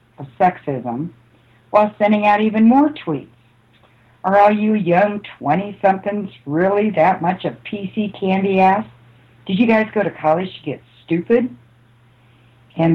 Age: 60-79